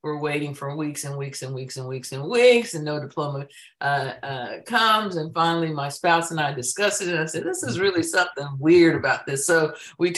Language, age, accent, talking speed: English, 50-69, American, 235 wpm